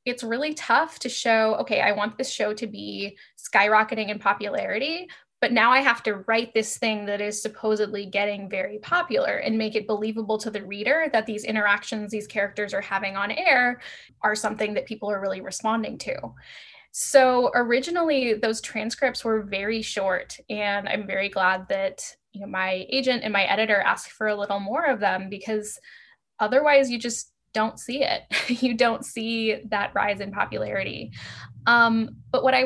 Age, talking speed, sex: 10-29, 175 wpm, female